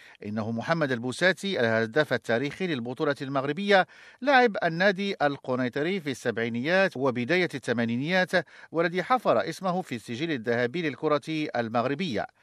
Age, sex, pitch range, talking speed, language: 50-69, male, 125-180 Hz, 105 wpm, English